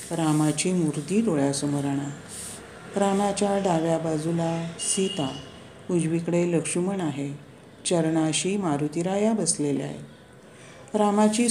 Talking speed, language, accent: 80 wpm, Marathi, native